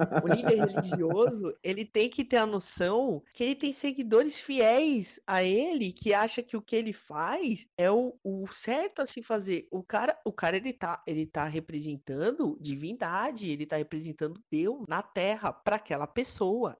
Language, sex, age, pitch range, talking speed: Portuguese, male, 20-39, 160-210 Hz, 175 wpm